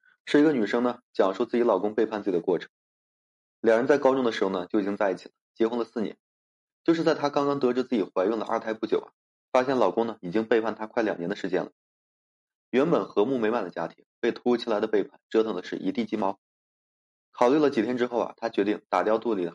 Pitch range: 95-125 Hz